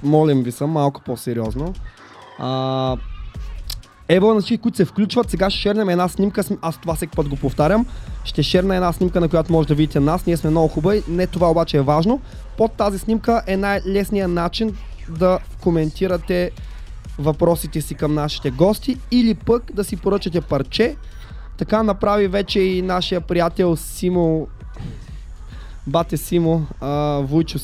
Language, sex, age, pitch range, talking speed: Bulgarian, male, 20-39, 150-190 Hz, 155 wpm